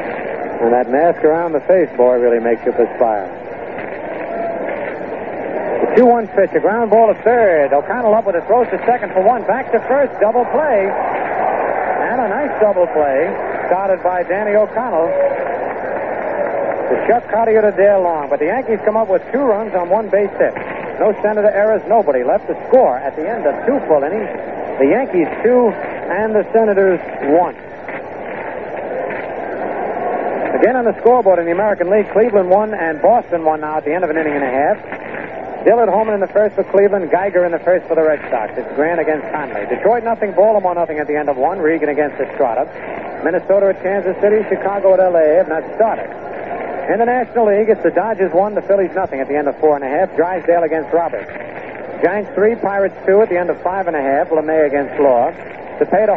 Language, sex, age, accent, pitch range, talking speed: English, male, 60-79, American, 160-210 Hz, 195 wpm